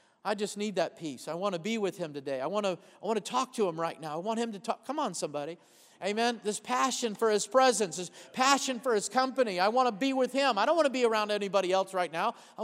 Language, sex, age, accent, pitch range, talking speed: English, male, 40-59, American, 195-250 Hz, 270 wpm